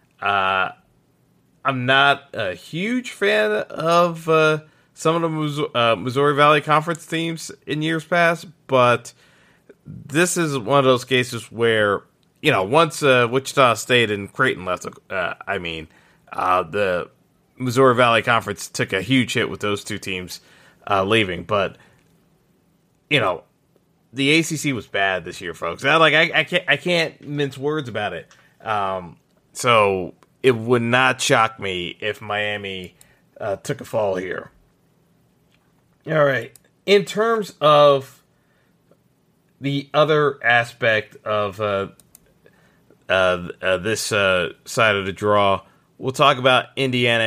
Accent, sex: American, male